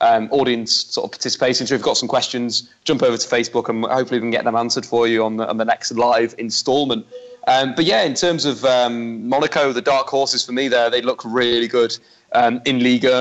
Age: 20-39